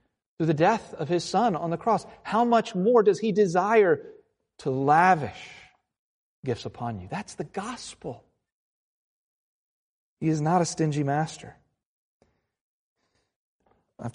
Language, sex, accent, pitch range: English, male, American, 115-150 Hz